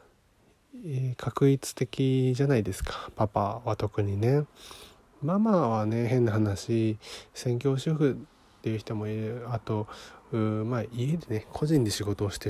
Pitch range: 110-145 Hz